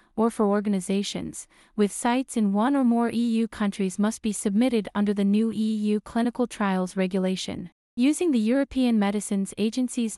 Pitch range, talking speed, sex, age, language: 195-245 Hz, 155 wpm, female, 30-49, English